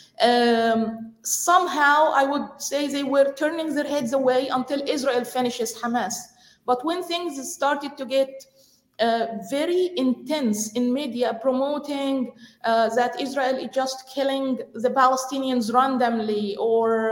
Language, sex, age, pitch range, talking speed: English, female, 20-39, 240-280 Hz, 130 wpm